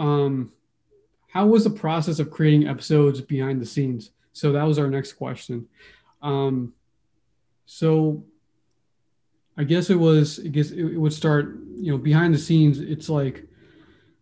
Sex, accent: male, American